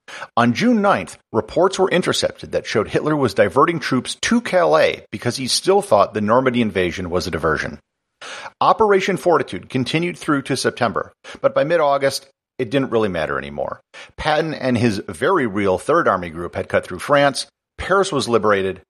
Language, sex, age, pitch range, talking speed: English, male, 50-69, 110-180 Hz, 170 wpm